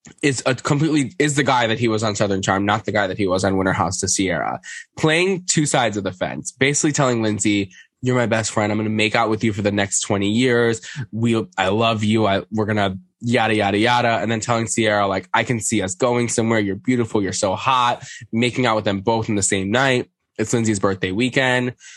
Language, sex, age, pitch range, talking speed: English, male, 10-29, 100-125 Hz, 235 wpm